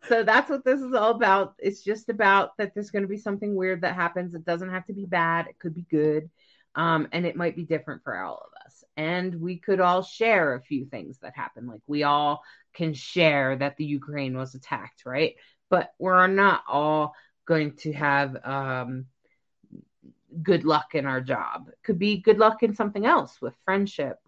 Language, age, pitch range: English, 30-49, 160-210 Hz